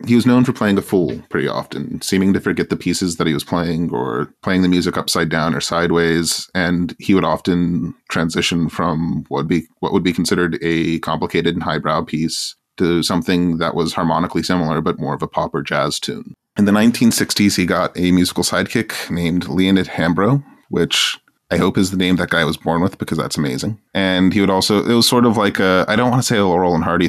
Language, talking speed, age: English, 220 wpm, 30-49